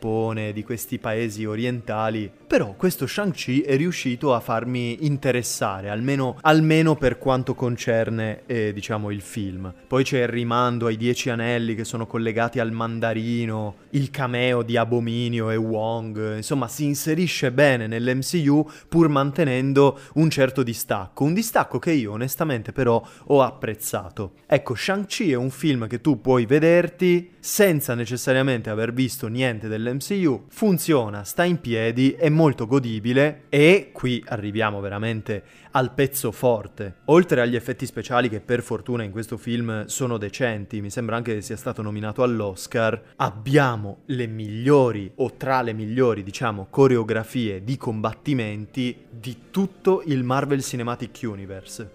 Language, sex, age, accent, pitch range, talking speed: Italian, male, 20-39, native, 115-135 Hz, 145 wpm